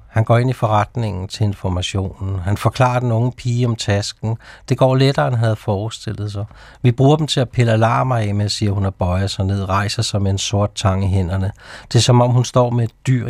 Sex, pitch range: male, 95-120 Hz